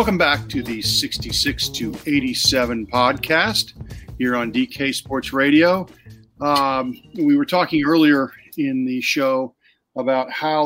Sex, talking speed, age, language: male, 130 wpm, 50-69, English